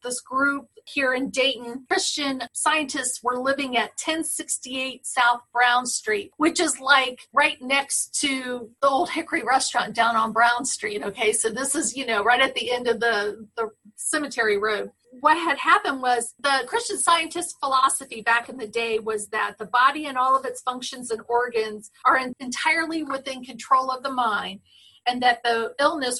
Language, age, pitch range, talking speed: English, 40-59, 235-285 Hz, 175 wpm